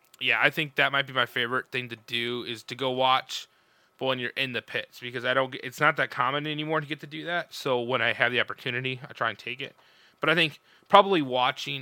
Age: 20-39